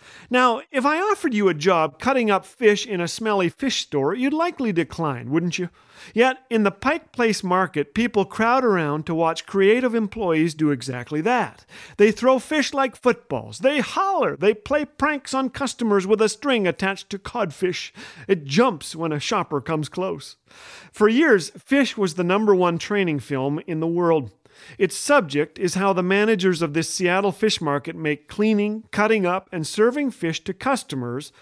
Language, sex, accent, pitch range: English, male, American, 160-230 Hz